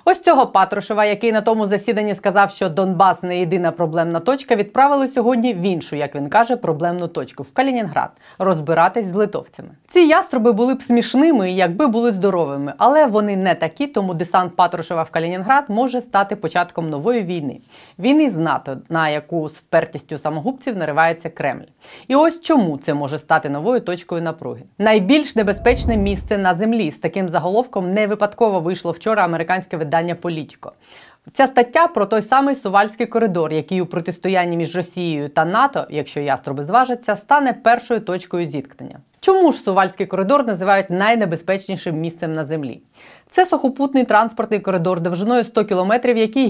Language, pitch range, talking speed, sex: Ukrainian, 170-240 Hz, 165 wpm, female